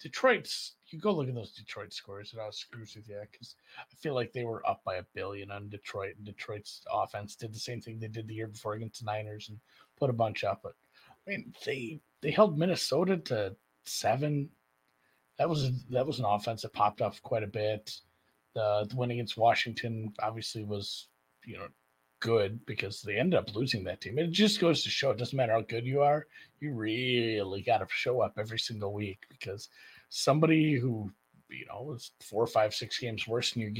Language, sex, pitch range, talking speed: English, male, 105-125 Hz, 210 wpm